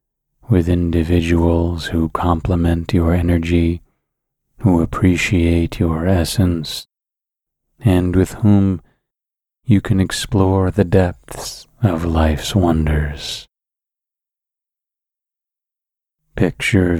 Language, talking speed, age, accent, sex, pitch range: English, 80 wpm, 30-49, American, male, 85-90 Hz